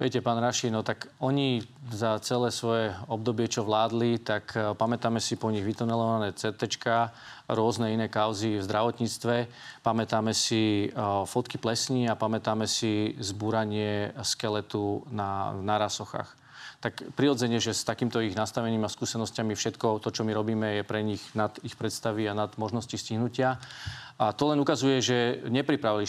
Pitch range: 110-120 Hz